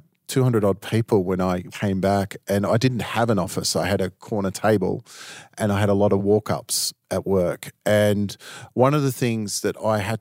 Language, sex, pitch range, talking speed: English, male, 100-115 Hz, 210 wpm